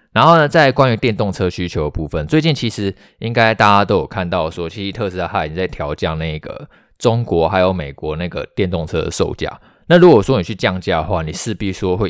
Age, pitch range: 20-39, 85-115 Hz